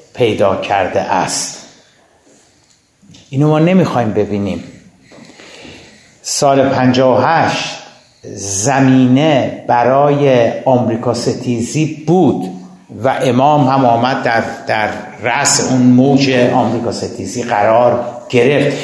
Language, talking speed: Persian, 85 wpm